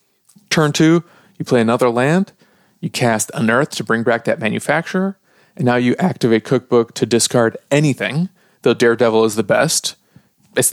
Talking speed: 155 wpm